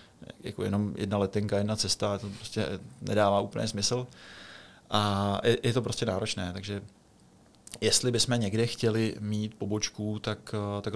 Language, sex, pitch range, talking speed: Czech, male, 105-115 Hz, 140 wpm